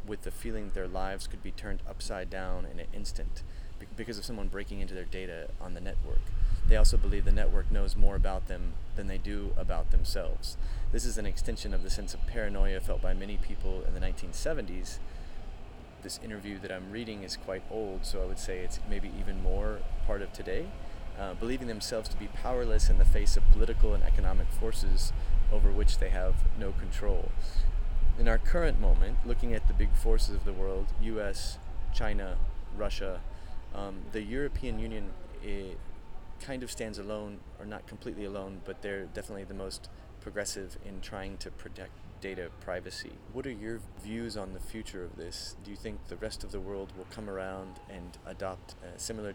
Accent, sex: American, male